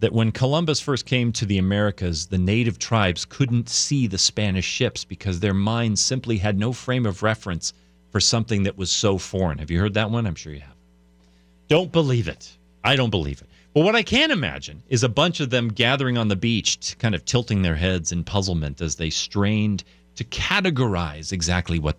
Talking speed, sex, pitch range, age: 205 wpm, male, 90-145 Hz, 40-59